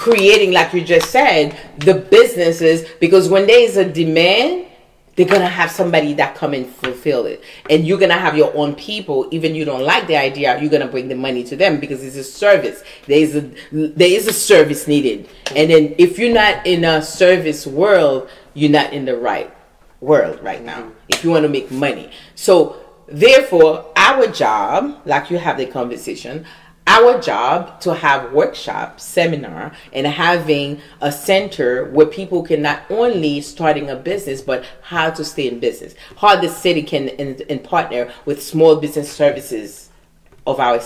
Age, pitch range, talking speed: 30-49, 145-190 Hz, 180 wpm